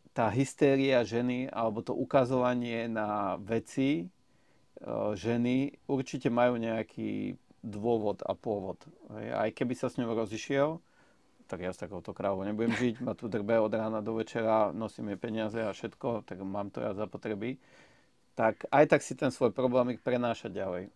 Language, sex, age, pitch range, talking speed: Slovak, male, 40-59, 105-130 Hz, 155 wpm